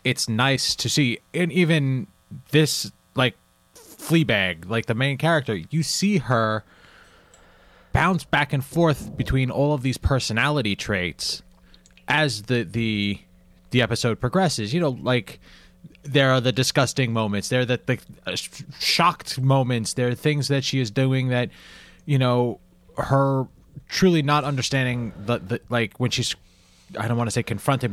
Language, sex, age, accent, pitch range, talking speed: English, male, 20-39, American, 105-140 Hz, 155 wpm